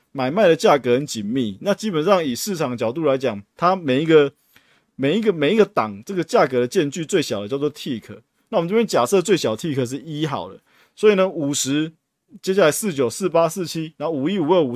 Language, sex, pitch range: Chinese, male, 130-180 Hz